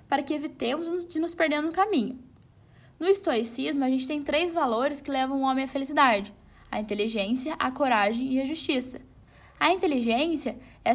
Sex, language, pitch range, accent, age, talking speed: female, Portuguese, 235-310 Hz, Brazilian, 10-29, 170 wpm